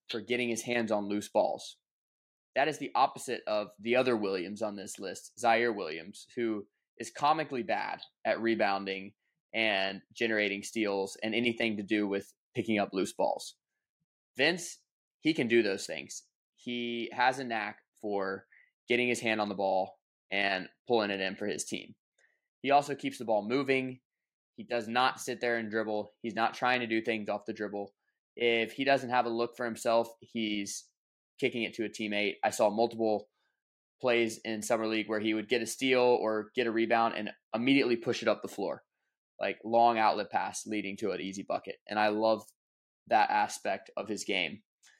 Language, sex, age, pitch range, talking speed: English, male, 20-39, 105-125 Hz, 185 wpm